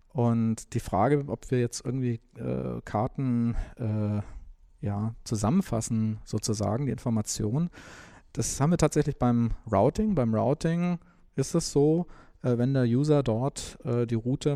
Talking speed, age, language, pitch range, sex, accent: 140 wpm, 40-59, German, 115-150 Hz, male, German